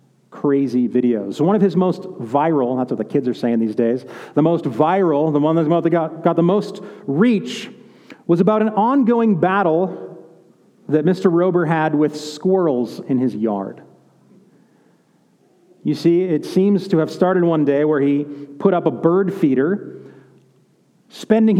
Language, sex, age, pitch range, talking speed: English, male, 40-59, 155-200 Hz, 155 wpm